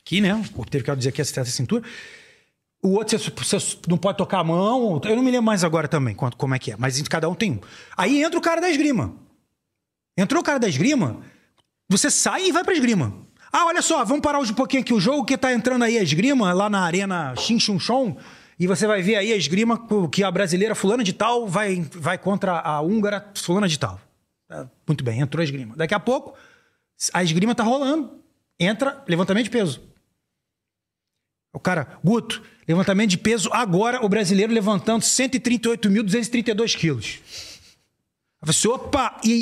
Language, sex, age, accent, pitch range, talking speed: Portuguese, male, 30-49, Brazilian, 170-230 Hz, 190 wpm